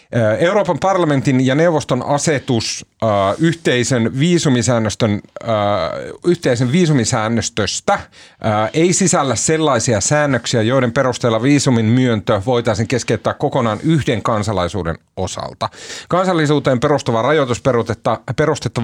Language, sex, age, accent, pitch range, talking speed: Finnish, male, 40-59, native, 105-145 Hz, 80 wpm